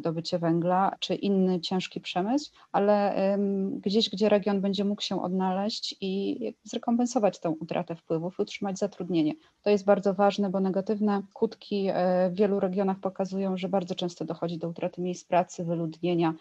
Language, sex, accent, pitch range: Polish, female, native, 175-205 Hz